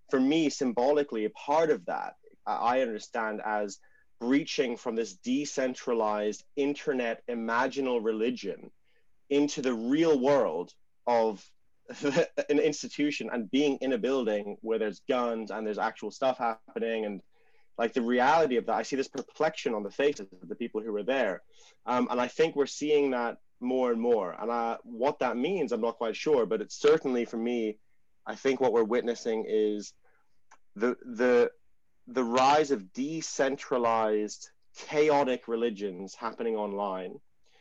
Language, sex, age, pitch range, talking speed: English, male, 30-49, 110-145 Hz, 150 wpm